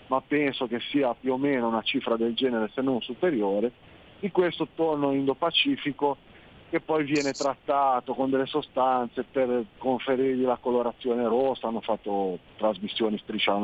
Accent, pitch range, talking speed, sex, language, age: native, 110-140 Hz, 150 wpm, male, Italian, 40-59